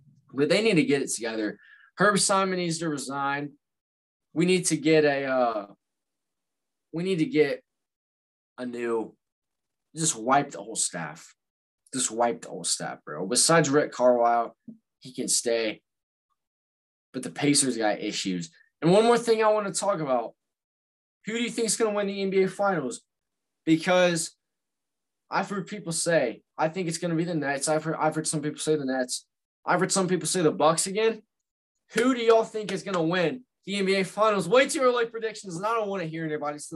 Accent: American